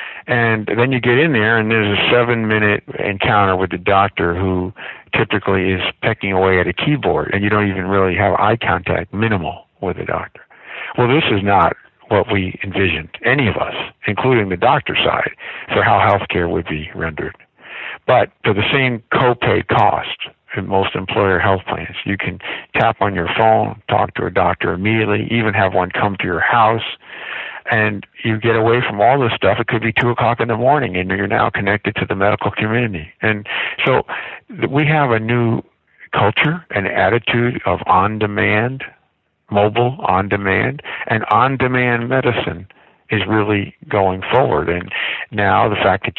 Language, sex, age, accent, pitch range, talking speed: English, male, 60-79, American, 95-115 Hz, 170 wpm